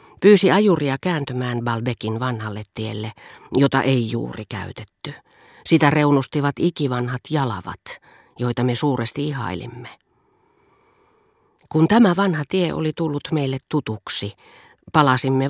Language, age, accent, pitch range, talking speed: Finnish, 40-59, native, 115-150 Hz, 105 wpm